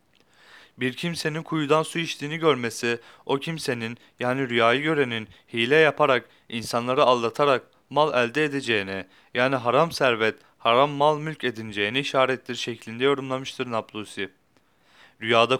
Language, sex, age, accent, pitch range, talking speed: Turkish, male, 30-49, native, 120-145 Hz, 115 wpm